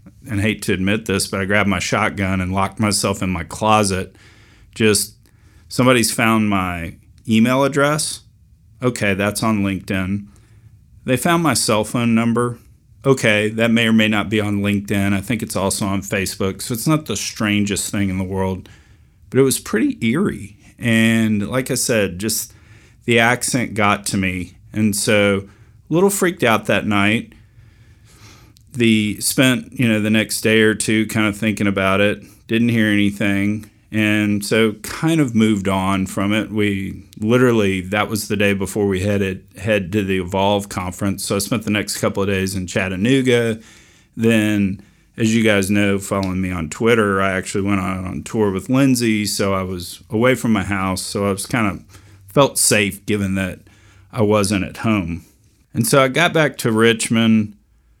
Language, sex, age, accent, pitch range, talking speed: English, male, 40-59, American, 100-115 Hz, 175 wpm